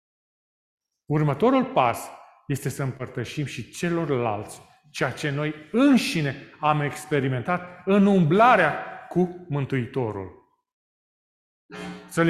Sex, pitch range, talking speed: male, 145-200 Hz, 90 wpm